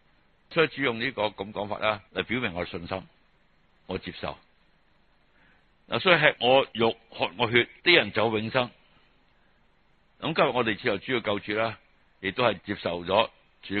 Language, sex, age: Chinese, male, 60-79